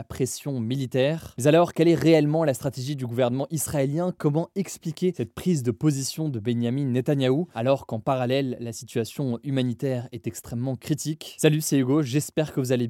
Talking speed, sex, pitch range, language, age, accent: 175 wpm, male, 125-155 Hz, French, 20-39, French